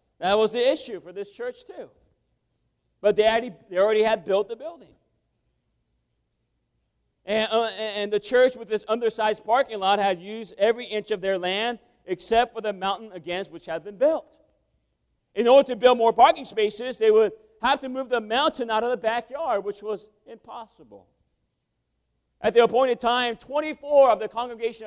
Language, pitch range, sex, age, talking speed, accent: English, 185-245 Hz, male, 40-59, 170 wpm, American